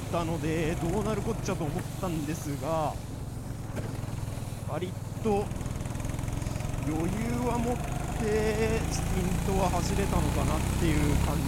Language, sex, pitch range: Japanese, male, 115-145 Hz